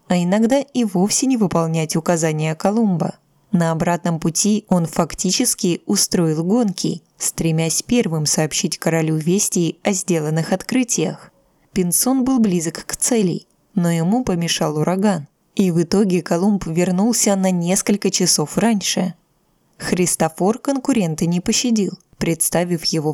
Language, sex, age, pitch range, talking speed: Russian, female, 20-39, 165-210 Hz, 120 wpm